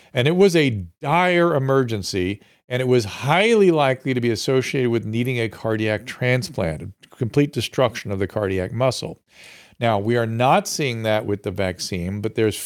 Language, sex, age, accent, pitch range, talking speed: English, male, 50-69, American, 105-145 Hz, 170 wpm